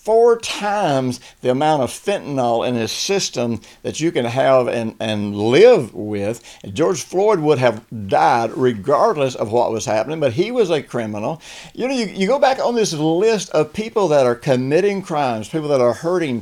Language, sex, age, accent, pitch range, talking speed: English, male, 60-79, American, 120-185 Hz, 185 wpm